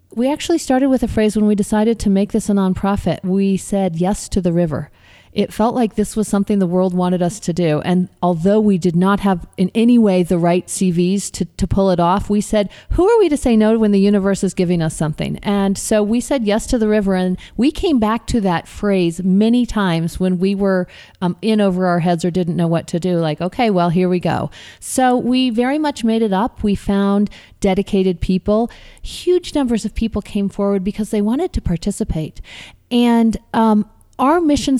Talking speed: 220 wpm